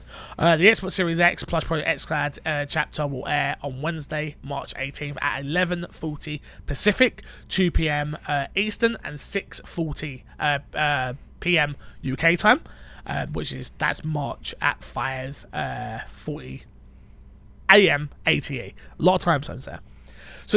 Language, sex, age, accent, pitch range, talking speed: English, male, 20-39, British, 145-185 Hz, 150 wpm